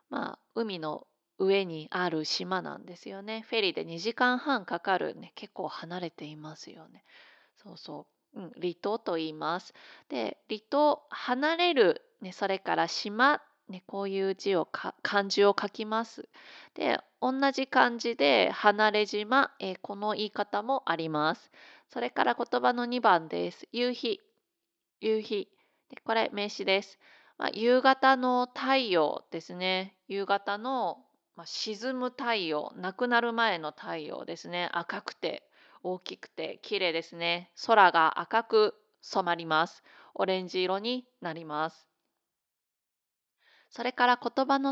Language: Japanese